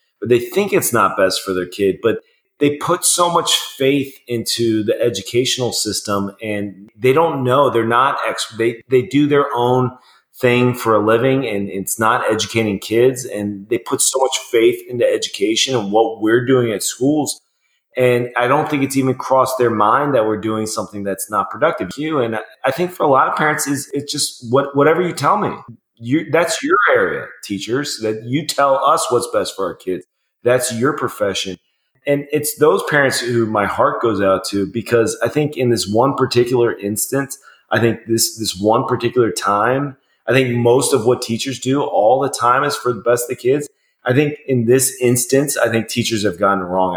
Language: English